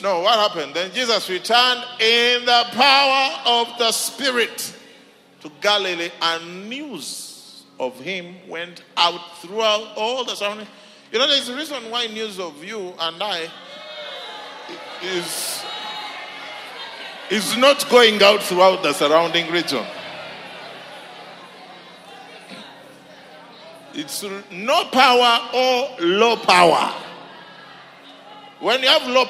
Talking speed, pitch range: 110 wpm, 170-245 Hz